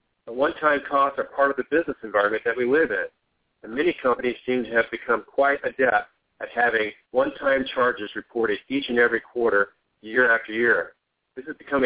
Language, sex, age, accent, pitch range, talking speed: English, male, 50-69, American, 120-170 Hz, 185 wpm